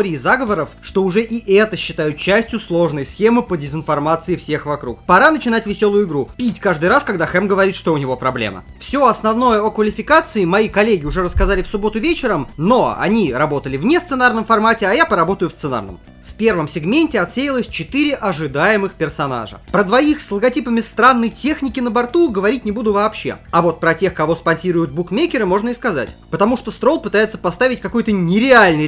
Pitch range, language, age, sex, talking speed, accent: 155-235 Hz, Russian, 20-39, male, 180 wpm, native